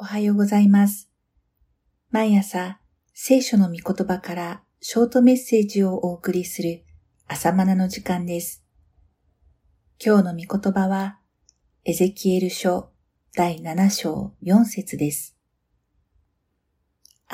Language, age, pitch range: Japanese, 50-69, 150-200 Hz